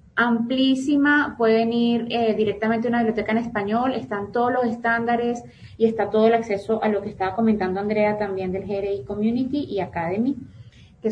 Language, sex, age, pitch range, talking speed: Spanish, female, 20-39, 210-240 Hz, 175 wpm